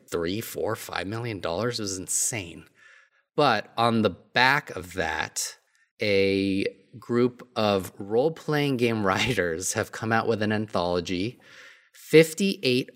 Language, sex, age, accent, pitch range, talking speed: English, male, 30-49, American, 95-120 Hz, 120 wpm